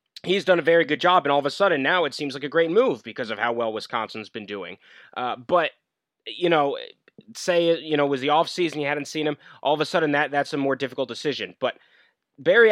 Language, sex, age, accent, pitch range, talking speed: English, male, 20-39, American, 135-165 Hz, 255 wpm